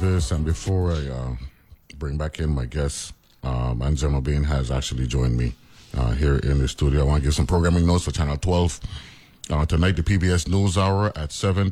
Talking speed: 195 wpm